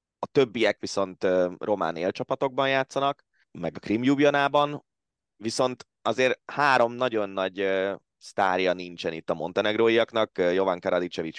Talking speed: 110 wpm